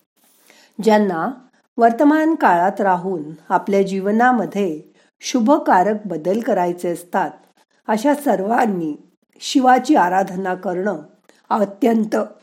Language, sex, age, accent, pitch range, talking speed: Marathi, female, 50-69, native, 185-240 Hz, 75 wpm